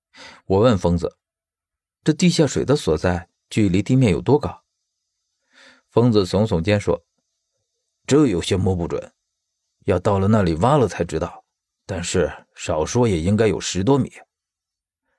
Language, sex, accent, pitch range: Chinese, male, native, 90-125 Hz